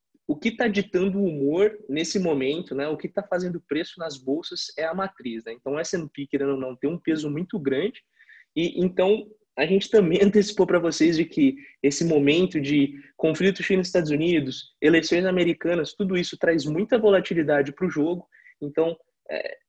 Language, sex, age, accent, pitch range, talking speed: Portuguese, male, 20-39, Brazilian, 140-180 Hz, 185 wpm